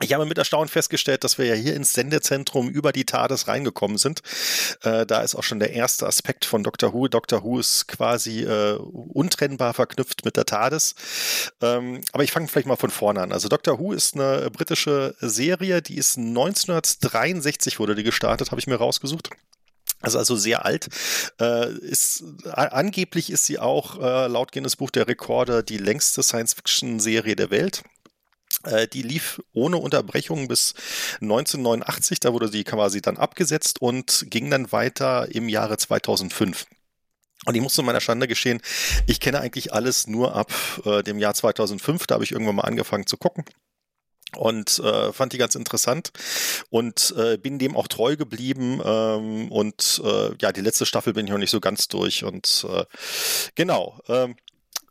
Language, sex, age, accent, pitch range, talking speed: German, male, 30-49, German, 110-140 Hz, 175 wpm